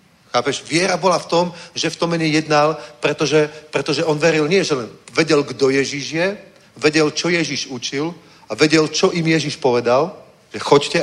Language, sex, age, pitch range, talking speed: Czech, male, 40-59, 140-165 Hz, 170 wpm